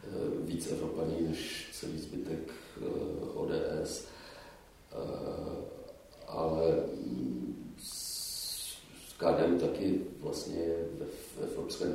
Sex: male